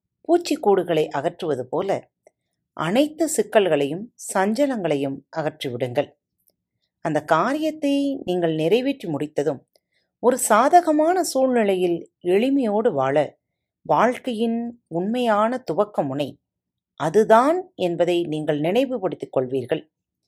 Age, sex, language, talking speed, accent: 40-59, female, Tamil, 75 wpm, native